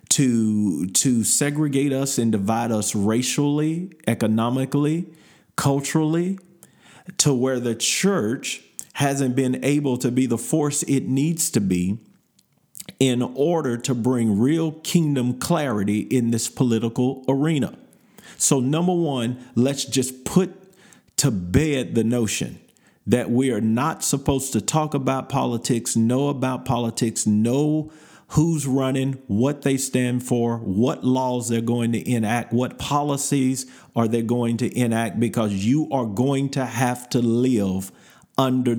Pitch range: 115-140 Hz